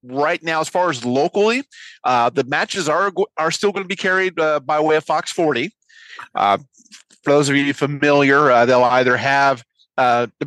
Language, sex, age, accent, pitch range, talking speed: English, male, 30-49, American, 140-195 Hz, 195 wpm